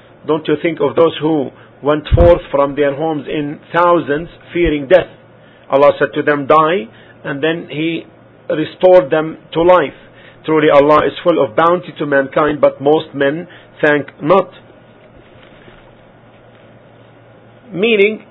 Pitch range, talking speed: 145-185 Hz, 135 wpm